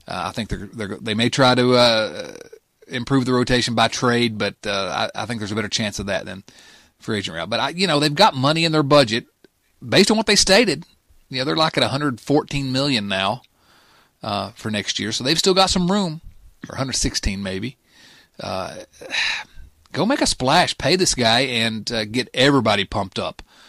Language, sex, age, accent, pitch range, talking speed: English, male, 40-59, American, 115-160 Hz, 205 wpm